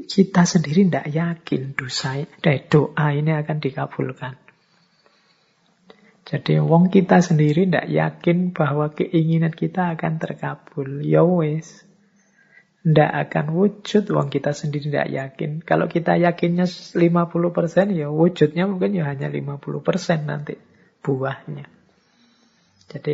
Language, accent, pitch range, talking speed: Indonesian, native, 140-185 Hz, 110 wpm